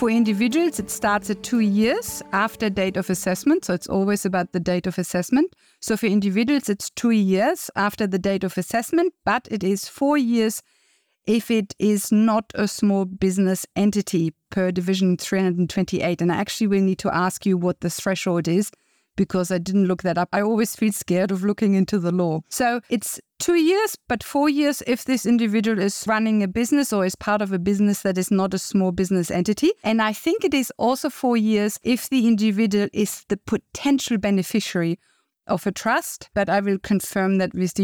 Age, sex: 50-69, female